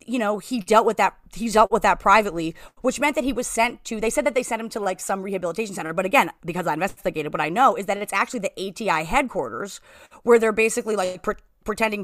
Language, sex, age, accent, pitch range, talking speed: English, female, 30-49, American, 190-240 Hz, 250 wpm